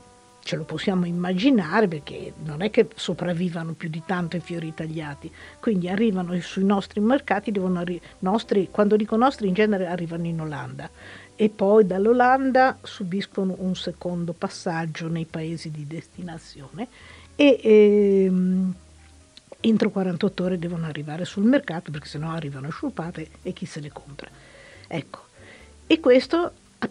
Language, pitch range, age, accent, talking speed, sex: Italian, 165-210 Hz, 50-69, native, 145 wpm, female